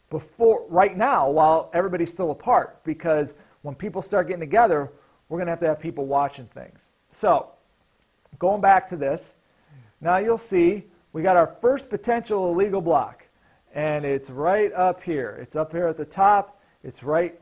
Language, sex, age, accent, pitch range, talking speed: English, male, 40-59, American, 150-200 Hz, 170 wpm